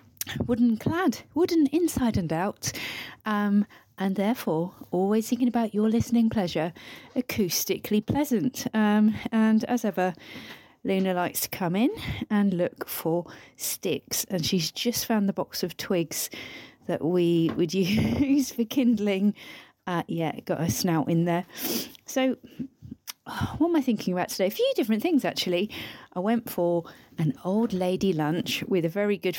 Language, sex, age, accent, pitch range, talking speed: English, female, 40-59, British, 175-240 Hz, 150 wpm